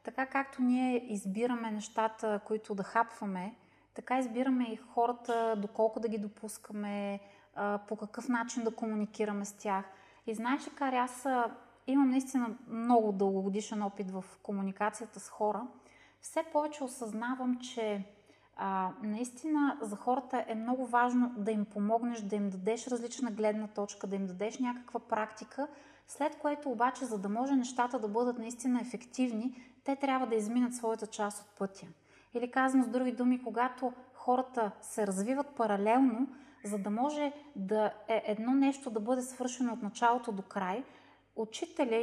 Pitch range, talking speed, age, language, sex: 210-255 Hz, 150 wpm, 20-39, Bulgarian, female